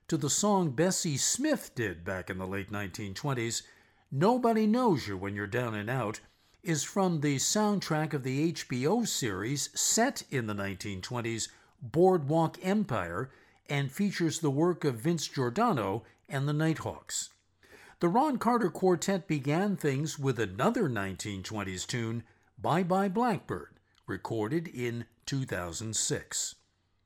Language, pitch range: English, 115-185 Hz